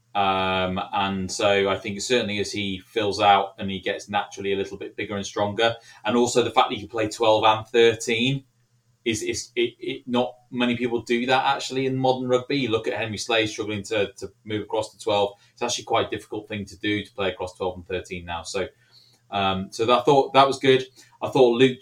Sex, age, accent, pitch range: male, 20-39, British, 105-125 Hz